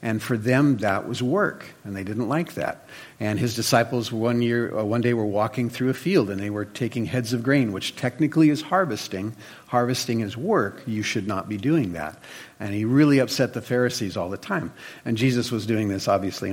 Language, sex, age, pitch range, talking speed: English, male, 50-69, 110-135 Hz, 210 wpm